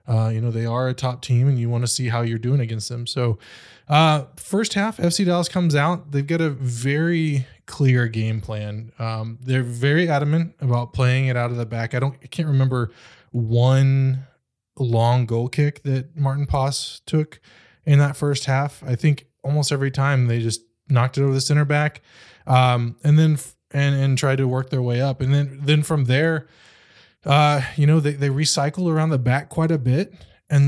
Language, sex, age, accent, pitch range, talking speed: English, male, 20-39, American, 125-145 Hz, 205 wpm